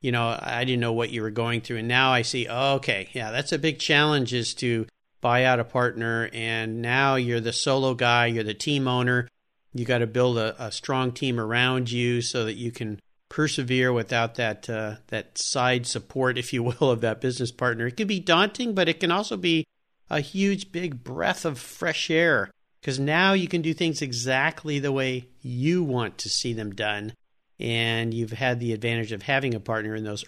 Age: 50-69